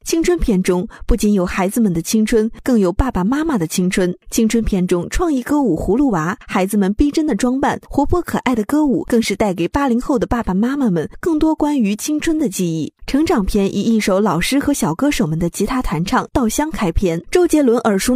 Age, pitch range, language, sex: 20-39, 190-270 Hz, Chinese, female